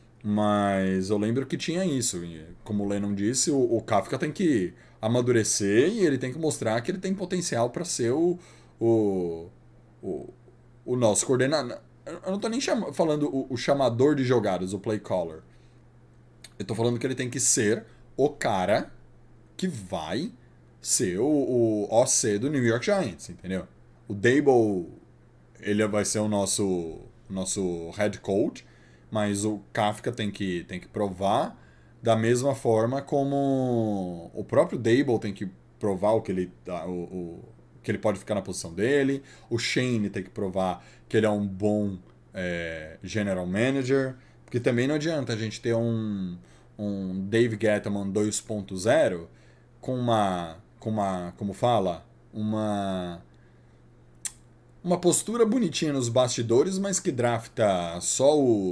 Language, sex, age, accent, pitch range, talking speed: Portuguese, male, 20-39, Brazilian, 95-125 Hz, 155 wpm